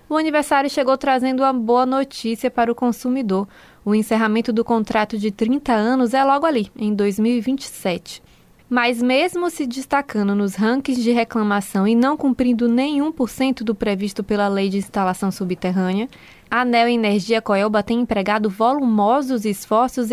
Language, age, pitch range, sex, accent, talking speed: Portuguese, 20-39, 215-265 Hz, female, Brazilian, 150 wpm